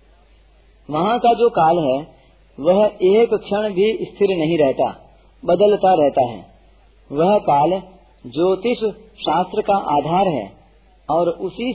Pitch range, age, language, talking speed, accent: 150-195 Hz, 40-59, Hindi, 125 wpm, native